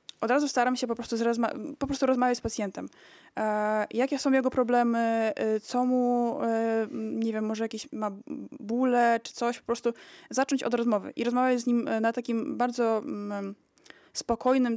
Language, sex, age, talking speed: Polish, female, 20-39, 145 wpm